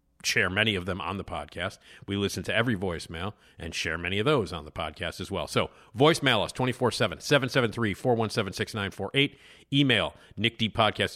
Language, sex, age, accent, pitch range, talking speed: English, male, 50-69, American, 90-130 Hz, 155 wpm